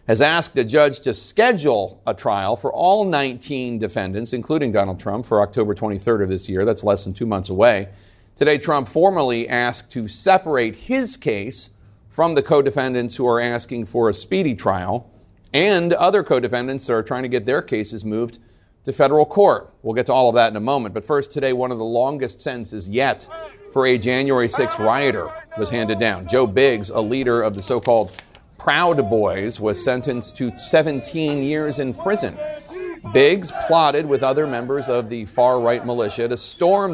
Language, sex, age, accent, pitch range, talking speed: English, male, 40-59, American, 110-145 Hz, 180 wpm